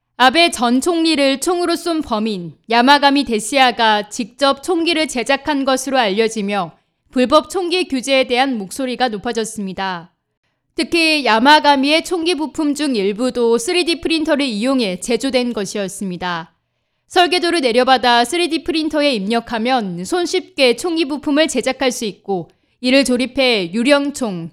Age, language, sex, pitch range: 20-39, Korean, female, 225-300 Hz